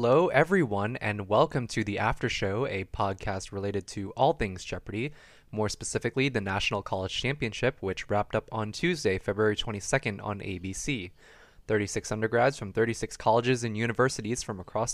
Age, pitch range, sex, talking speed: 20-39, 100-130 Hz, male, 155 wpm